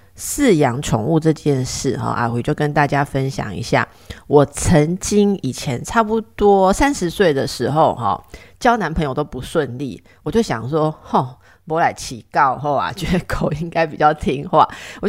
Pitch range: 135-180 Hz